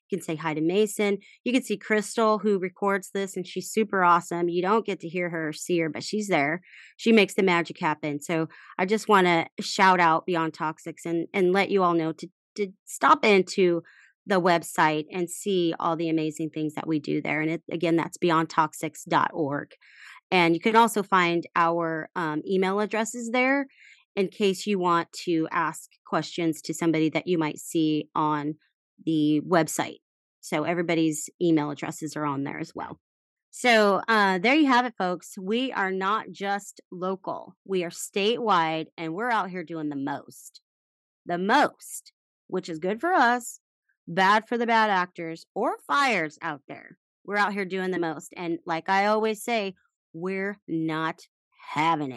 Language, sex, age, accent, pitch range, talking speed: English, female, 30-49, American, 165-210 Hz, 180 wpm